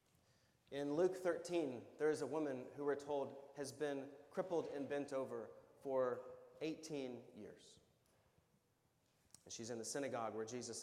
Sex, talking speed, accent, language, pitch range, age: male, 145 wpm, American, English, 125-160 Hz, 30-49